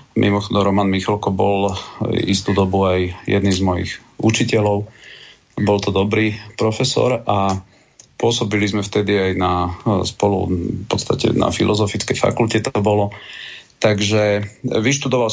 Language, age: Slovak, 40-59